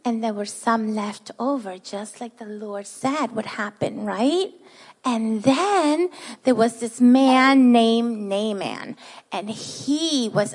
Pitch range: 230-290 Hz